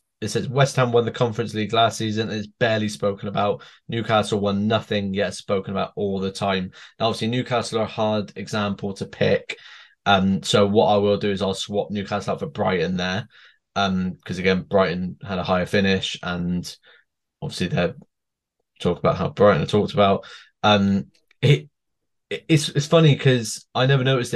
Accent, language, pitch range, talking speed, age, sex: British, English, 100-120 Hz, 180 wpm, 20-39, male